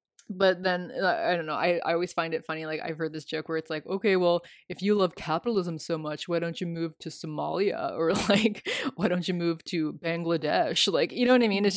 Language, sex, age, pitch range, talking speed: English, female, 20-39, 165-200 Hz, 245 wpm